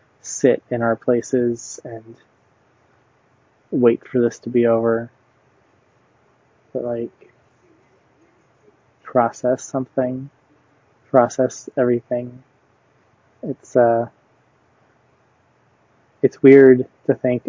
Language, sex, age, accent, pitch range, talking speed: English, male, 20-39, American, 115-125 Hz, 80 wpm